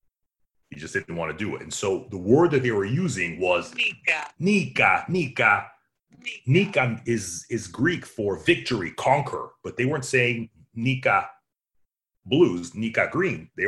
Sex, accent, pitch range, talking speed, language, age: male, American, 105-135 Hz, 155 wpm, English, 30-49